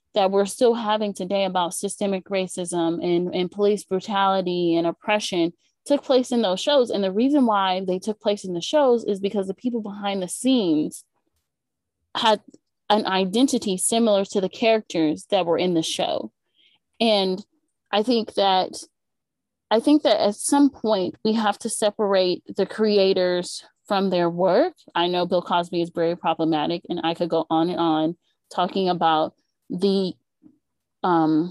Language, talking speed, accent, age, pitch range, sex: English, 160 wpm, American, 20-39, 175-215 Hz, female